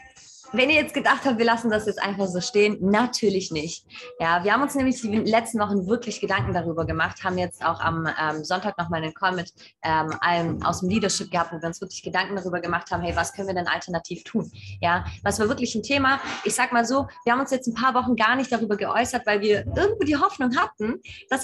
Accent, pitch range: German, 175-250 Hz